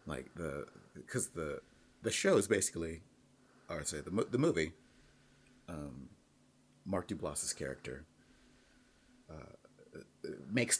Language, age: English, 30-49